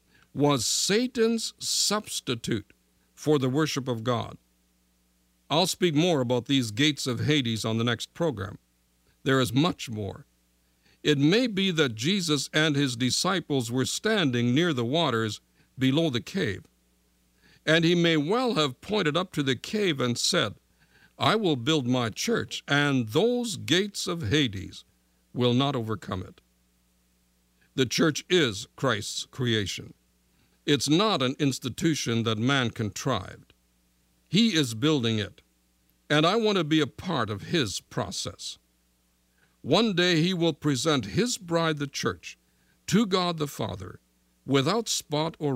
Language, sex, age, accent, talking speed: English, male, 60-79, American, 140 wpm